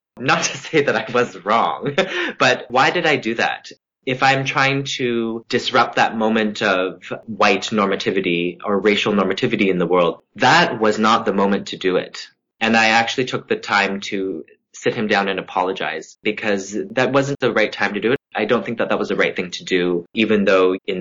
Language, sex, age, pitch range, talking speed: English, male, 20-39, 90-115 Hz, 205 wpm